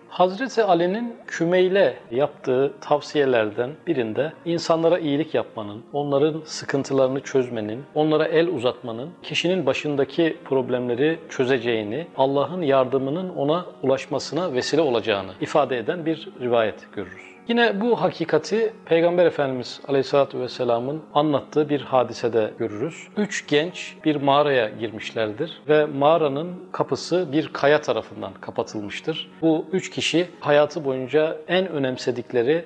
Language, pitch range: Turkish, 125-160 Hz